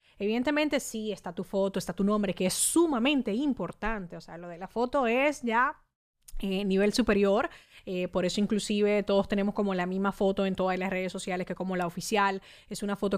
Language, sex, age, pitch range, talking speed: Spanish, female, 20-39, 185-235 Hz, 205 wpm